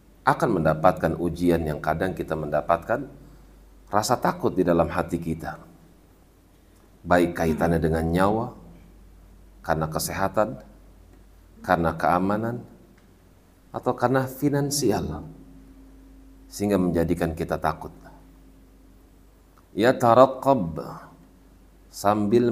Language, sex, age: Indonesian, male, 40-59